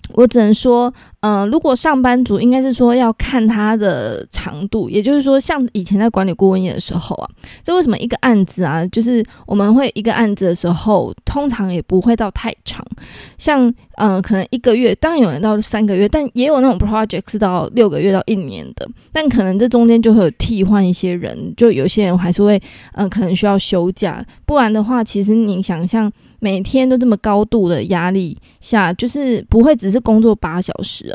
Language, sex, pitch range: Chinese, female, 195-240 Hz